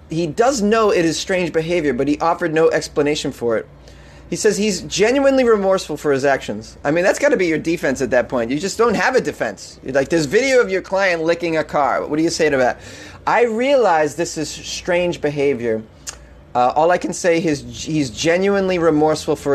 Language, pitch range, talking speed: English, 135-175 Hz, 215 wpm